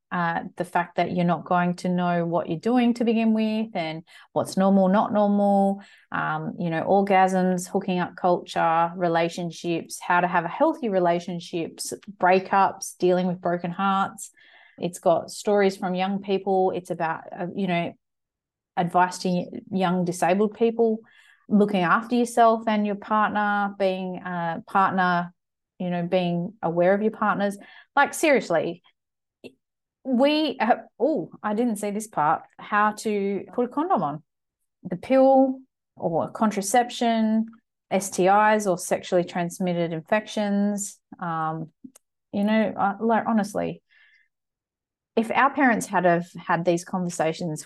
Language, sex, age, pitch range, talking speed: English, female, 30-49, 175-220 Hz, 135 wpm